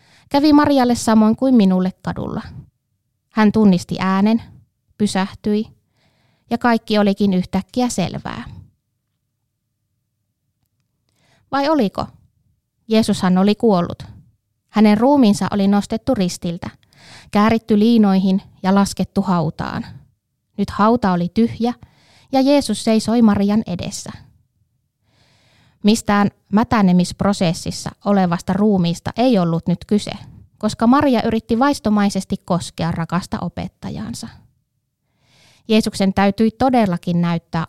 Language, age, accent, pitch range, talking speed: Finnish, 20-39, native, 150-220 Hz, 90 wpm